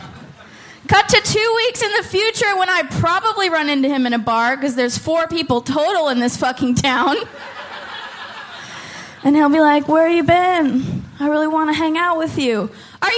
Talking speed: 185 wpm